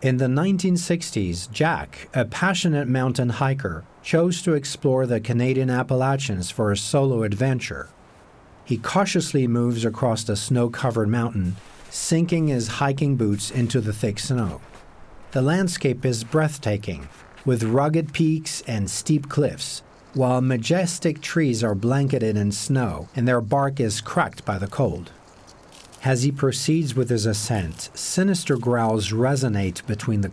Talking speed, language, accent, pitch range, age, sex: 135 wpm, English, American, 110-150 Hz, 50-69, male